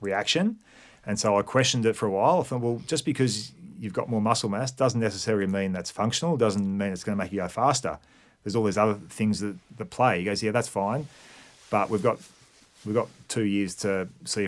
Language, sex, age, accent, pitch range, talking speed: English, male, 30-49, Australian, 100-115 Hz, 230 wpm